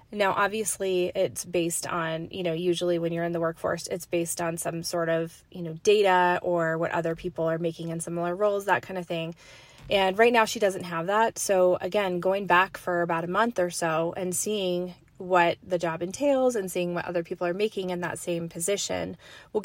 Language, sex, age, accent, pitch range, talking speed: English, female, 20-39, American, 170-205 Hz, 215 wpm